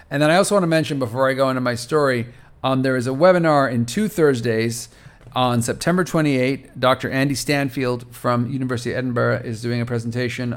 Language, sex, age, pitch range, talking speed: English, male, 40-59, 120-150 Hz, 200 wpm